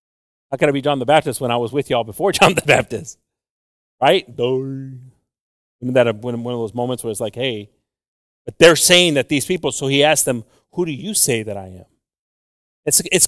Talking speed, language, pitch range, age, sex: 205 wpm, English, 115-150 Hz, 40-59, male